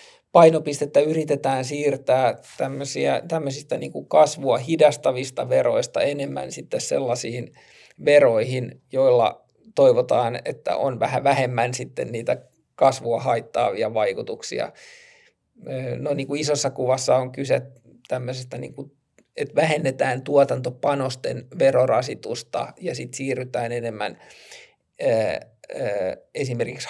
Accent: native